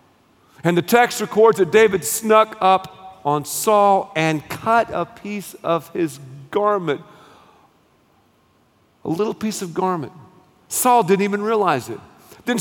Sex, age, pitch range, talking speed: male, 50-69, 195-280 Hz, 135 wpm